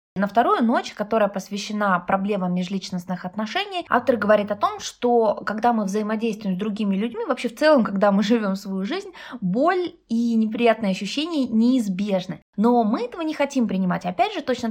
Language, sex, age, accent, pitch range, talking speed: Russian, female, 20-39, native, 195-260 Hz, 165 wpm